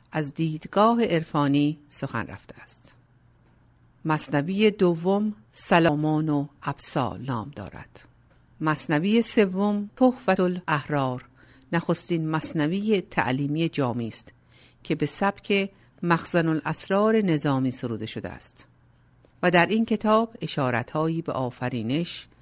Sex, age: female, 50-69